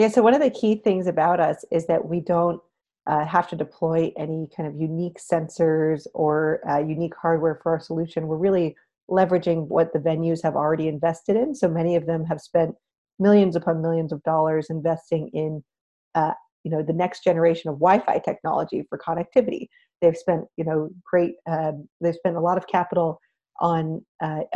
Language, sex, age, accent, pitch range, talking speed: English, female, 40-59, American, 160-180 Hz, 190 wpm